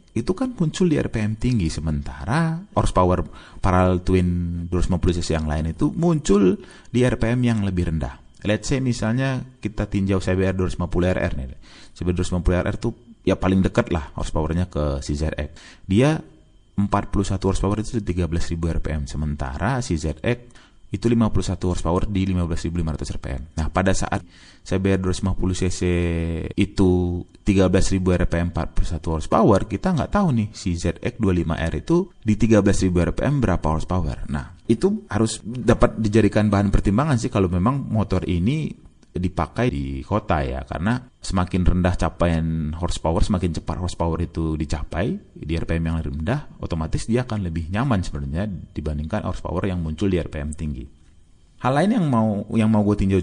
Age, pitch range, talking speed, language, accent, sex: 30-49, 85-110 Hz, 145 wpm, Indonesian, native, male